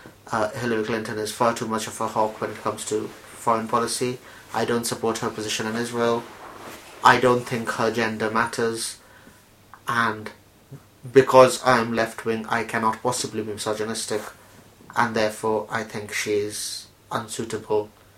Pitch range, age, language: 105-120 Hz, 30-49, English